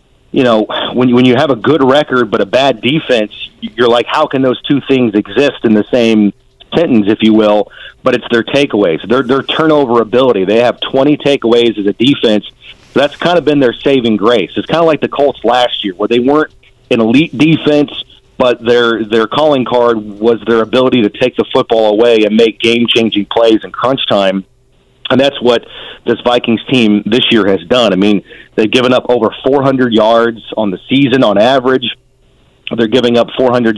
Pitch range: 115-130 Hz